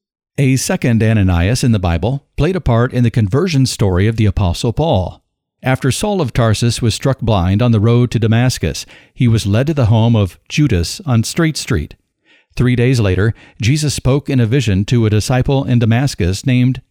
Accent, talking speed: American, 190 wpm